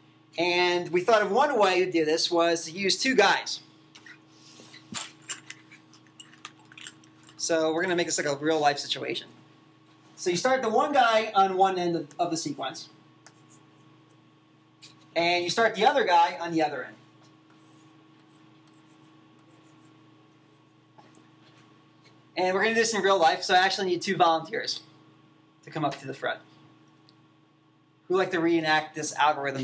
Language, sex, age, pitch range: English, male, 30-49, 155-175 Hz